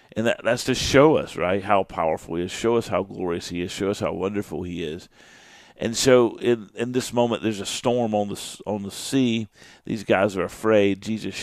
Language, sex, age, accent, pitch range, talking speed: English, male, 50-69, American, 100-115 Hz, 220 wpm